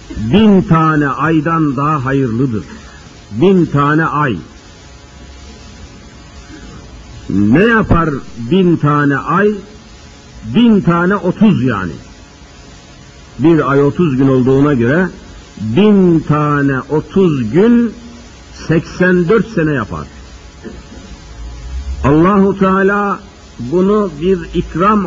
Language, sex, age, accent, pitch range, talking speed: Turkish, male, 60-79, native, 110-180 Hz, 85 wpm